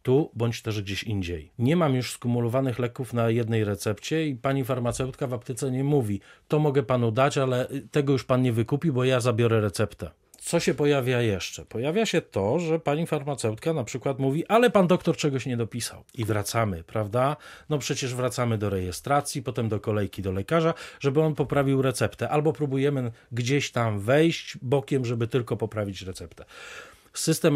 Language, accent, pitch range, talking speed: Polish, native, 115-145 Hz, 175 wpm